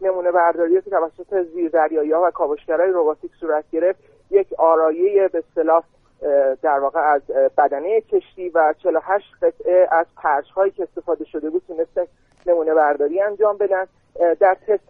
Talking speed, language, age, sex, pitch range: 140 wpm, Persian, 40-59, male, 165-210 Hz